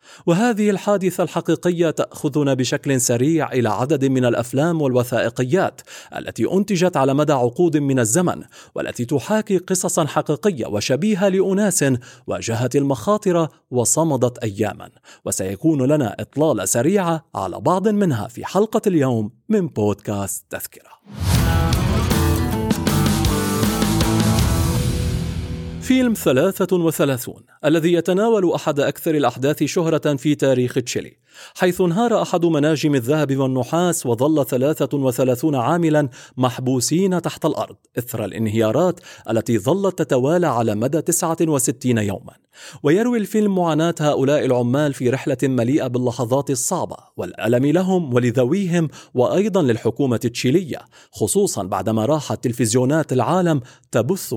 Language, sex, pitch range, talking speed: Arabic, male, 125-175 Hz, 105 wpm